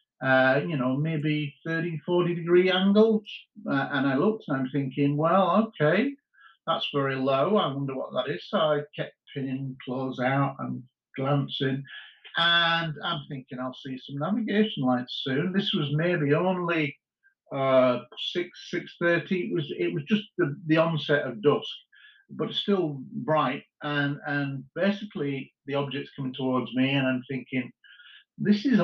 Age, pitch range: 50-69, 130-180 Hz